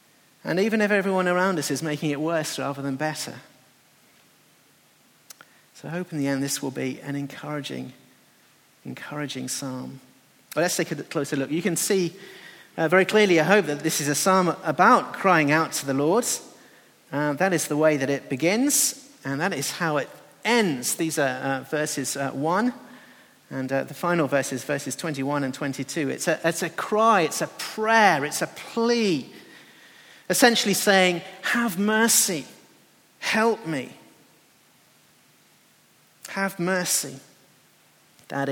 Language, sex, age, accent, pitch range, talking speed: English, male, 40-59, British, 140-185 Hz, 155 wpm